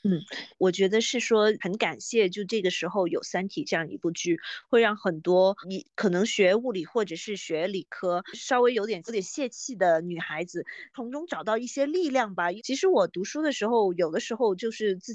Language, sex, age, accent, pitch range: Chinese, female, 20-39, native, 180-230 Hz